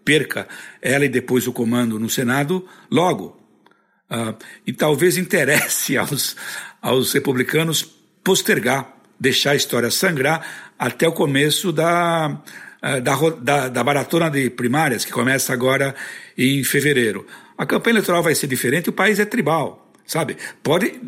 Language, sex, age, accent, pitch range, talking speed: Portuguese, male, 60-79, Brazilian, 130-180 Hz, 140 wpm